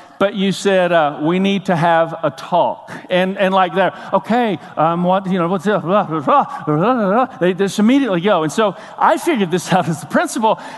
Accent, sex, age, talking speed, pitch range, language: American, male, 50-69, 190 wpm, 175-240 Hz, English